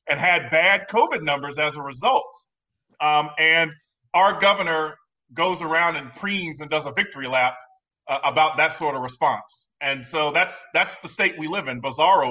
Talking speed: 180 wpm